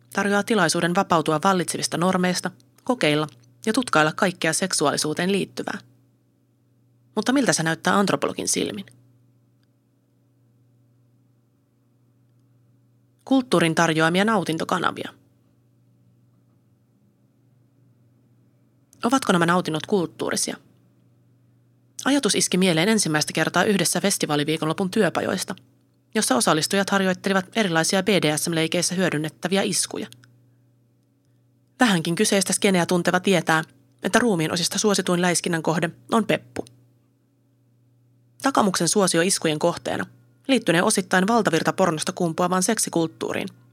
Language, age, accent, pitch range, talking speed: Finnish, 30-49, native, 125-195 Hz, 85 wpm